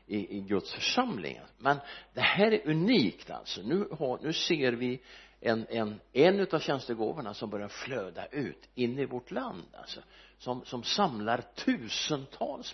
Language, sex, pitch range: Swedish, male, 115-180 Hz